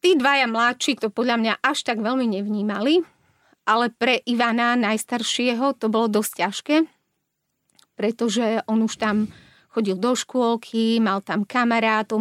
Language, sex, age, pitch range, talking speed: Slovak, female, 30-49, 215-240 Hz, 140 wpm